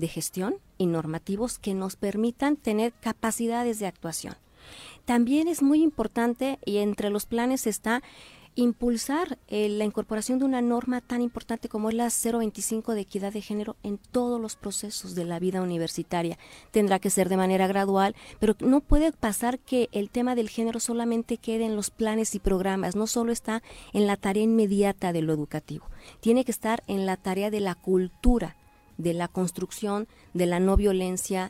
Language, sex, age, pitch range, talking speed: Spanish, female, 40-59, 185-230 Hz, 175 wpm